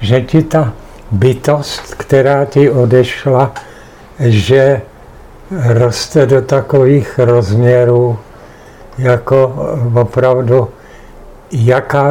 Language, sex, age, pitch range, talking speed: Czech, male, 60-79, 120-140 Hz, 75 wpm